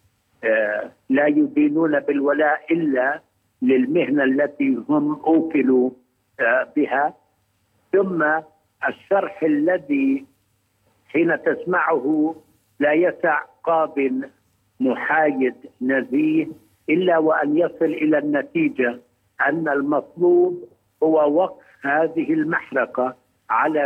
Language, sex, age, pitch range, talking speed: Arabic, male, 60-79, 130-185 Hz, 80 wpm